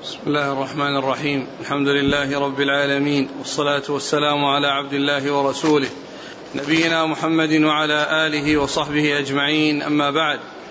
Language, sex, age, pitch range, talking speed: Arabic, male, 40-59, 155-175 Hz, 125 wpm